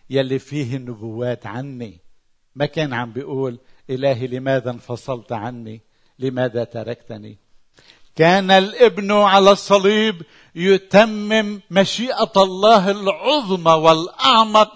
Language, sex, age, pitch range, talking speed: Arabic, male, 50-69, 125-165 Hz, 95 wpm